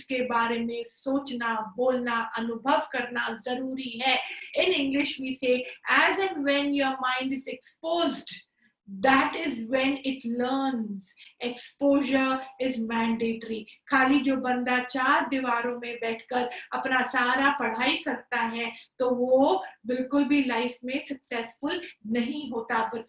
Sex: female